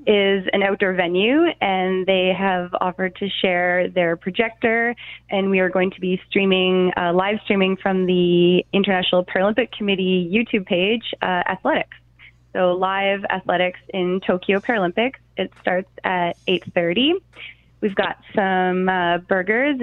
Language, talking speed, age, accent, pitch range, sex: English, 140 wpm, 20-39, American, 185-225 Hz, female